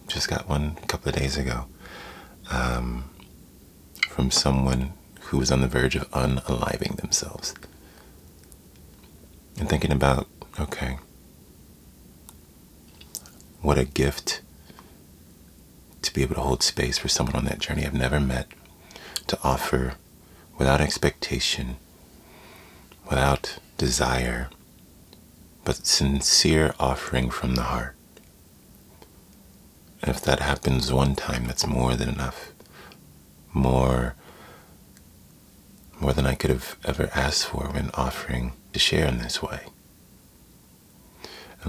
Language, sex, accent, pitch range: English, male, American, 65-75 Hz